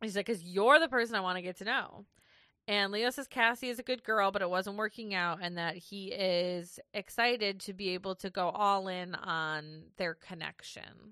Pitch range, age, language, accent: 170-200 Hz, 20-39, English, American